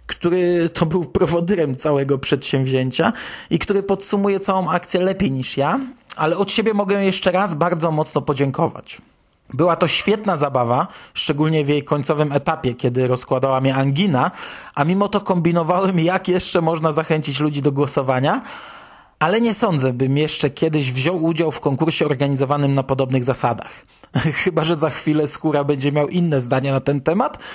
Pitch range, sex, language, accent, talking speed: 140-190 Hz, male, Polish, native, 160 wpm